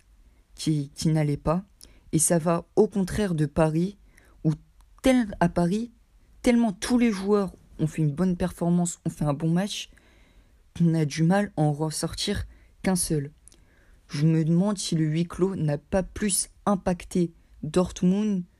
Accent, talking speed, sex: French, 160 wpm, female